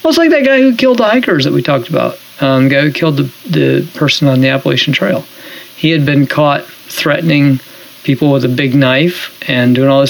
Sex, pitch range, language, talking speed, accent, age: male, 130-160 Hz, English, 230 wpm, American, 40-59